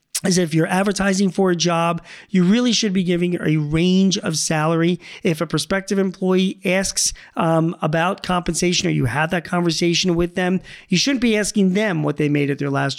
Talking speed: 190 wpm